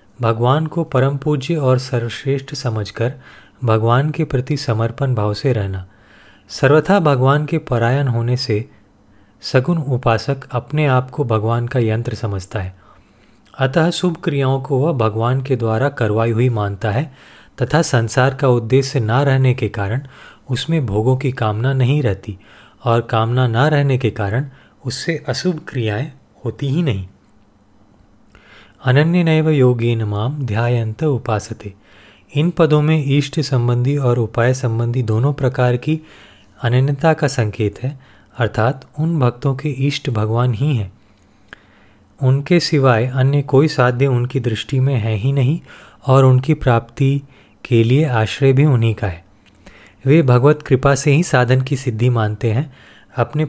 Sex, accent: male, native